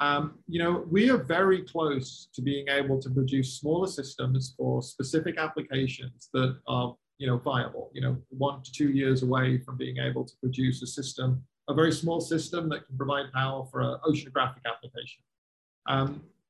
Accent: British